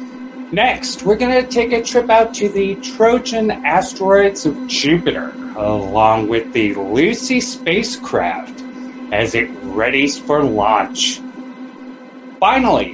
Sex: male